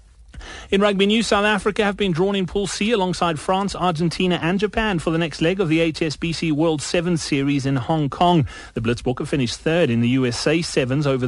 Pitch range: 130-175 Hz